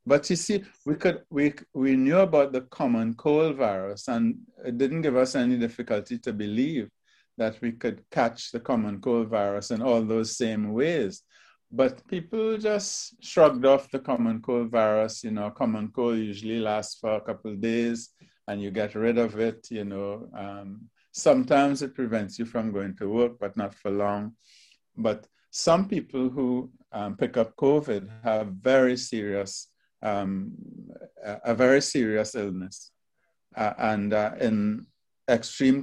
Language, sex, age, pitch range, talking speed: English, male, 50-69, 105-130 Hz, 160 wpm